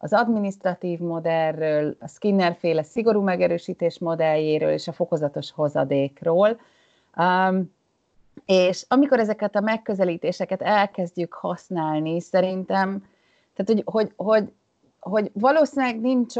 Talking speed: 90 wpm